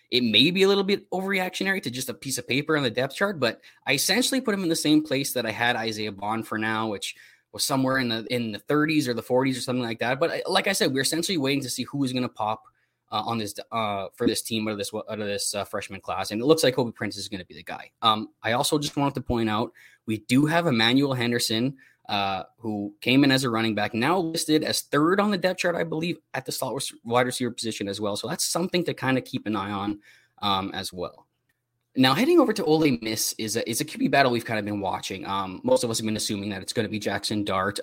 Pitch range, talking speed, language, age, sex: 110-150 Hz, 275 wpm, English, 20-39, male